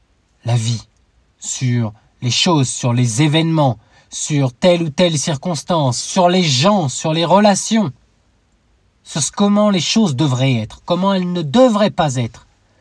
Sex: male